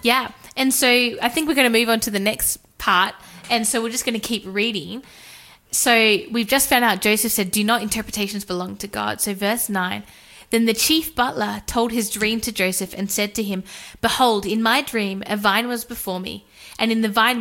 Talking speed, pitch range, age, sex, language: 220 wpm, 200-240 Hz, 10-29, female, English